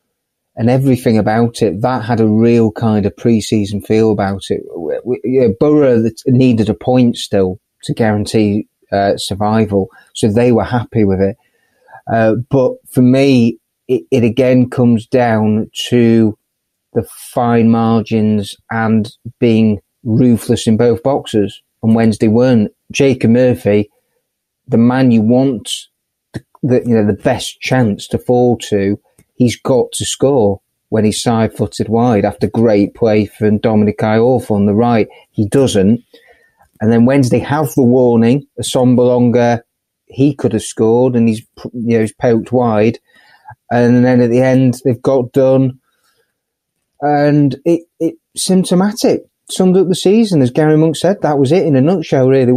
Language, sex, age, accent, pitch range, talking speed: English, male, 30-49, British, 110-130 Hz, 155 wpm